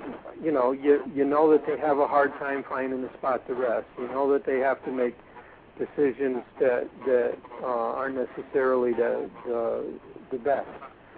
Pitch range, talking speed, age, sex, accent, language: 125-145 Hz, 175 wpm, 60-79, male, American, English